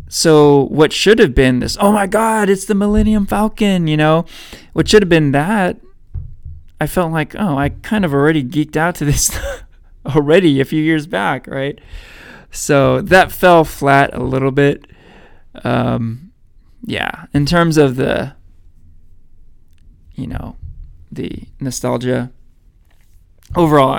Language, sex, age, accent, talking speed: English, male, 20-39, American, 140 wpm